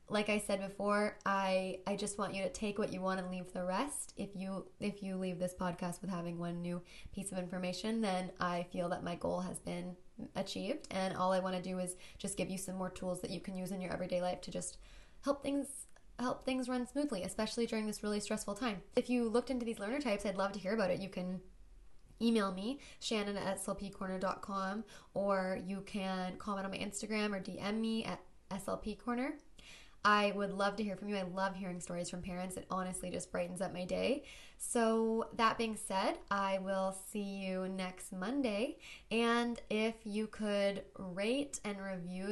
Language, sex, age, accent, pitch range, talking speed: English, female, 10-29, American, 185-215 Hz, 205 wpm